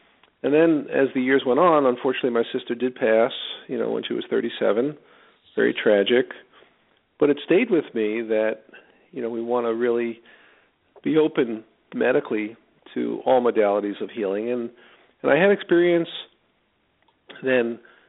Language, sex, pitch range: English, male, 115-135 Hz